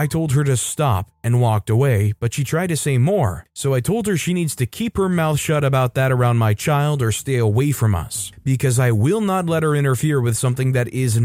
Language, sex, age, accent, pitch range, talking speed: English, male, 30-49, American, 115-150 Hz, 245 wpm